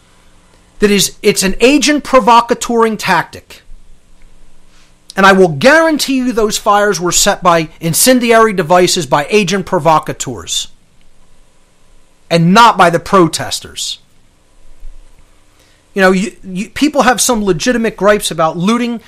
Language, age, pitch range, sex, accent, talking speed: English, 40-59, 170-235 Hz, male, American, 120 wpm